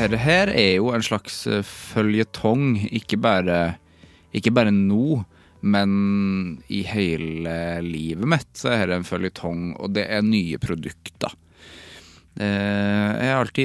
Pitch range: 100-135 Hz